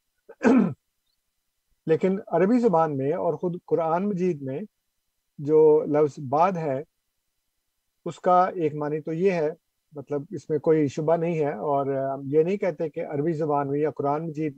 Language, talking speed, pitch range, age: Urdu, 160 wpm, 140-180 Hz, 50-69